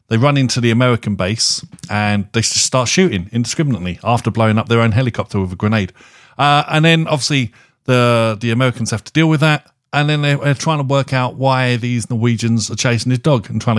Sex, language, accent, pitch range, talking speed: male, English, British, 110-140 Hz, 210 wpm